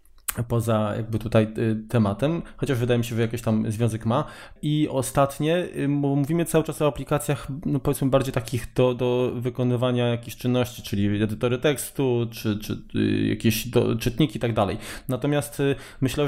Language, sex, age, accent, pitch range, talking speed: Polish, male, 20-39, native, 115-145 Hz, 160 wpm